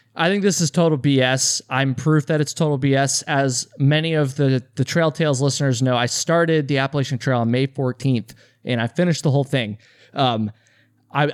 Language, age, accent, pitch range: English, 20-39, American, 120-150 Hz